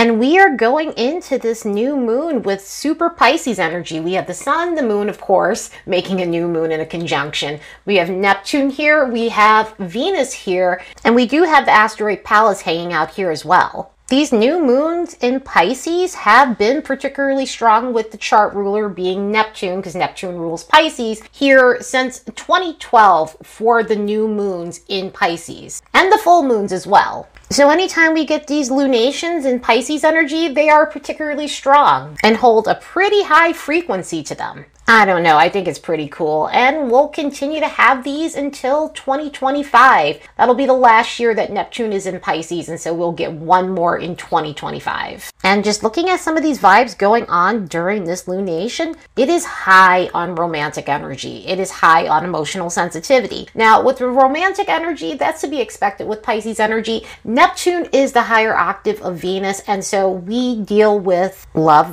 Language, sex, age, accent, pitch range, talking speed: English, female, 30-49, American, 185-280 Hz, 180 wpm